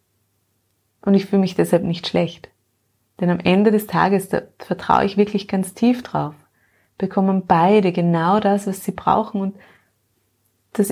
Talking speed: 155 wpm